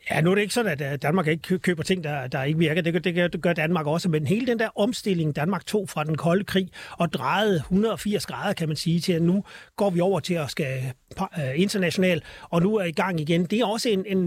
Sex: male